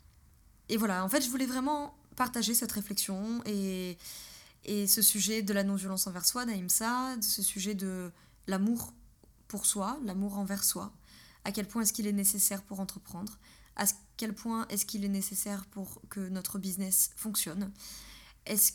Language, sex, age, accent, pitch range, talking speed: French, female, 20-39, French, 185-215 Hz, 165 wpm